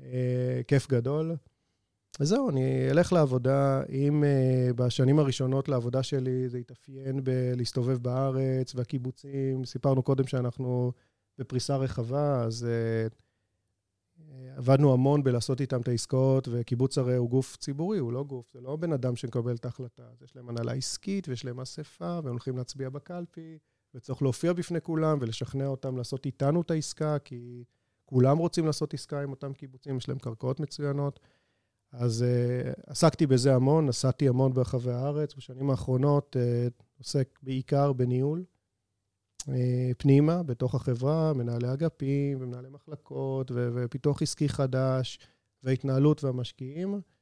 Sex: male